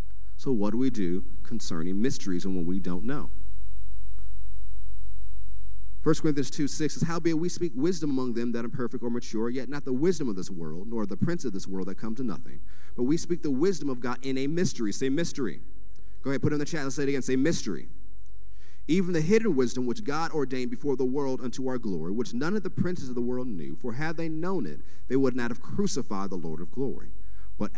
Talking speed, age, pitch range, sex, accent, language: 230 wpm, 40-59, 95-155 Hz, male, American, English